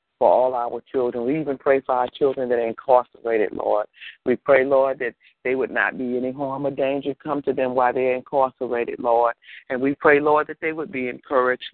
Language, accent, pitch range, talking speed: English, American, 125-135 Hz, 215 wpm